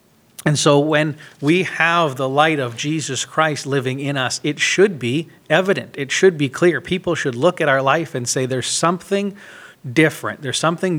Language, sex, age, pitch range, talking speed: English, male, 40-59, 120-150 Hz, 185 wpm